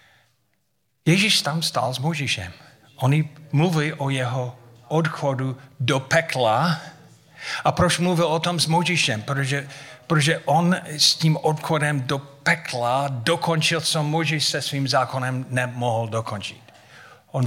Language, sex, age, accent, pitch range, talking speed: Czech, male, 40-59, native, 110-140 Hz, 125 wpm